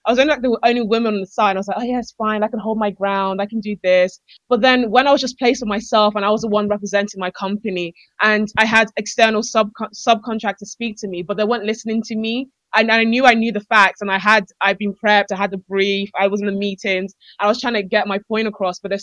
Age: 20-39